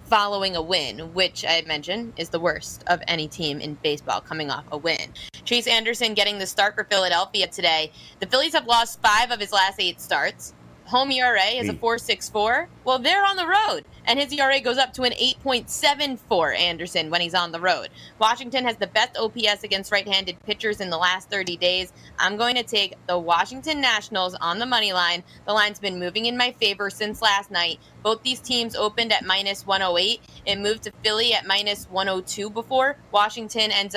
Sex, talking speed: female, 195 wpm